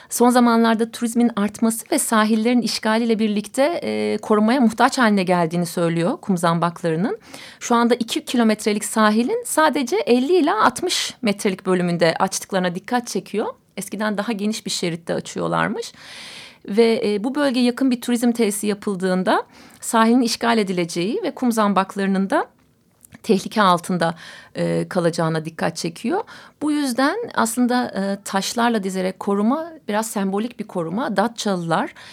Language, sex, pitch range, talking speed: Turkish, female, 185-235 Hz, 130 wpm